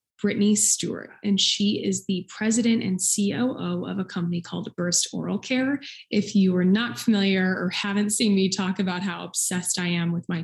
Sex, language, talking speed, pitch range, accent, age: female, English, 190 wpm, 190-230 Hz, American, 20-39